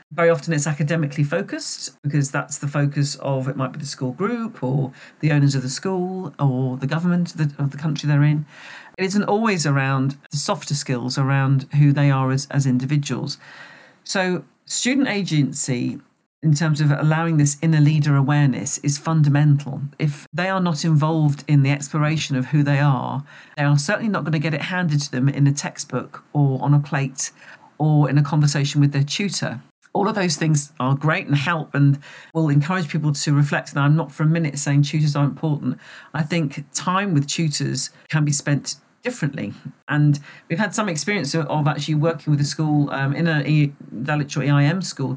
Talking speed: 195 wpm